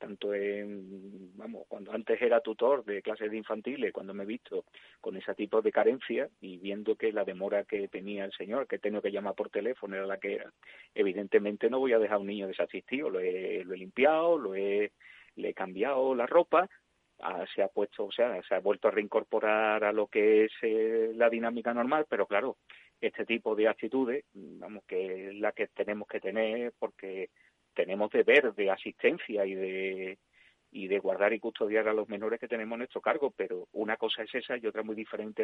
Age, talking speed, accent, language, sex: 30-49, 205 wpm, Spanish, Spanish, male